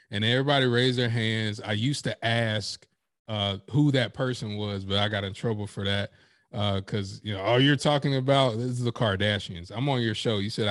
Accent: American